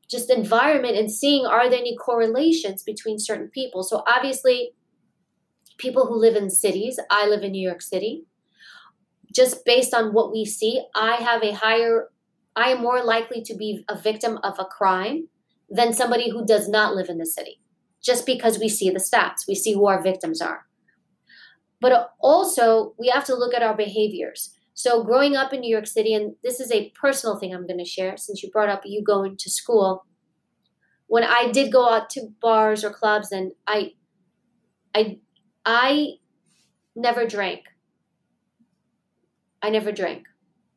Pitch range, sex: 205-245 Hz, female